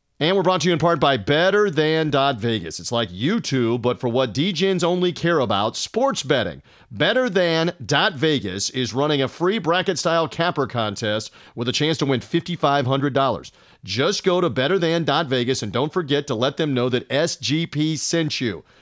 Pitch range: 125-165 Hz